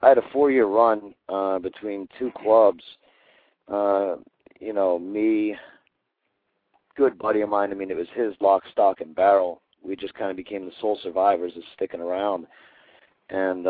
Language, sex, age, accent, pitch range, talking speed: English, male, 40-59, American, 90-105 Hz, 165 wpm